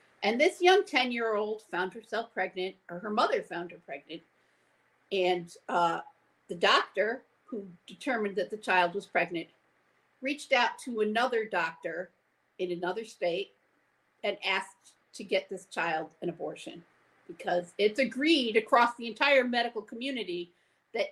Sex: female